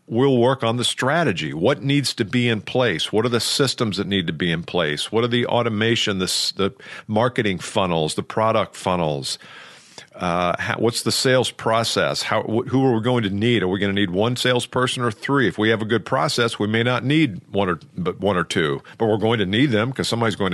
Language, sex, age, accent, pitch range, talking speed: English, male, 50-69, American, 100-130 Hz, 230 wpm